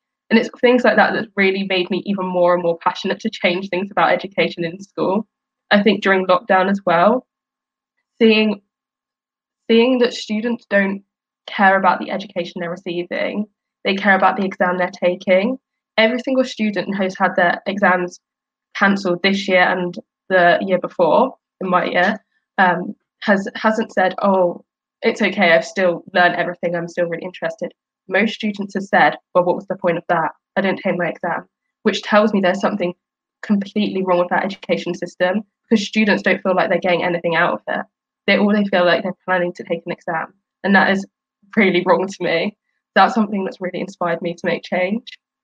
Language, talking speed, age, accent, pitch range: English, 190 wpm, 10-29, British, 175-215 Hz